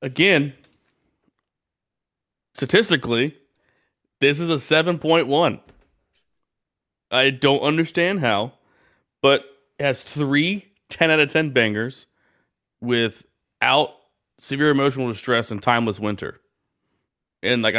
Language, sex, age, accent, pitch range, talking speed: English, male, 30-49, American, 110-140 Hz, 95 wpm